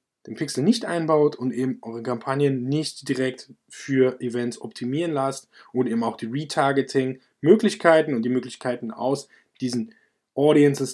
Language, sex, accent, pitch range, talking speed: German, male, German, 130-170 Hz, 135 wpm